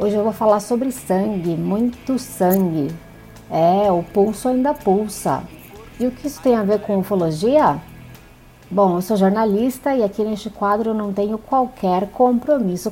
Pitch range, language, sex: 185-245 Hz, Portuguese, female